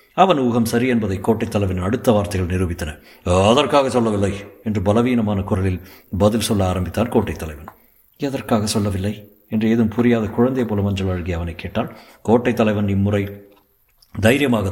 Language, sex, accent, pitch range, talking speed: Tamil, male, native, 95-120 Hz, 140 wpm